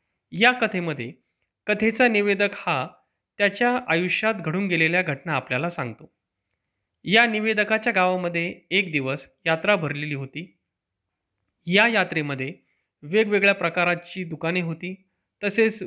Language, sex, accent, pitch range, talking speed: Marathi, male, native, 155-210 Hz, 100 wpm